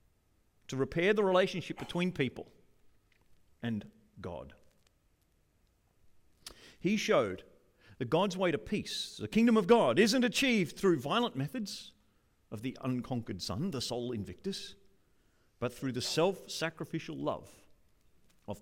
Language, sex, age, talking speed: English, male, 40-59, 120 wpm